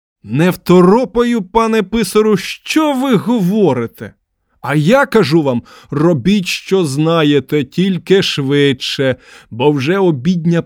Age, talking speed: 20-39, 105 wpm